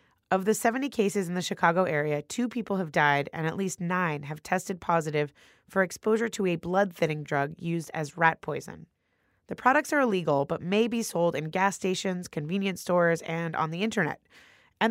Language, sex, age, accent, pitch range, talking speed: English, female, 20-39, American, 170-225 Hz, 190 wpm